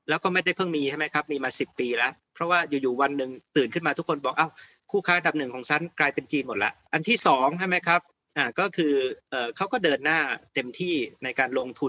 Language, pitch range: Thai, 135-165 Hz